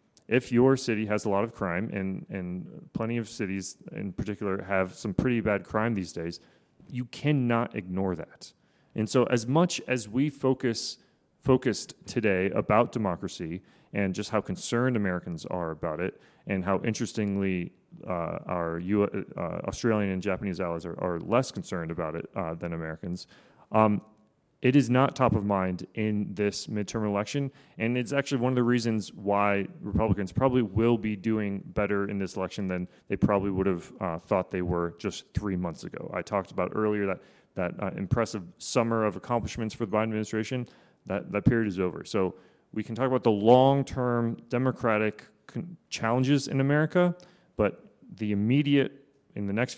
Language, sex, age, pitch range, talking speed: English, male, 30-49, 95-125 Hz, 170 wpm